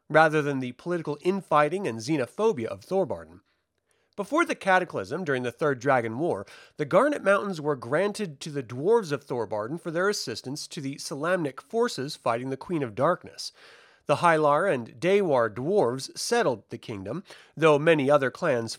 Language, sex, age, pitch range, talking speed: English, male, 40-59, 140-195 Hz, 165 wpm